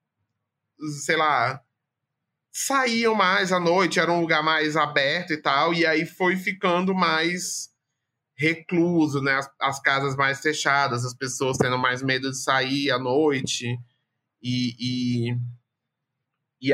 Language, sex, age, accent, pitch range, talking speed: English, male, 20-39, Brazilian, 130-175 Hz, 130 wpm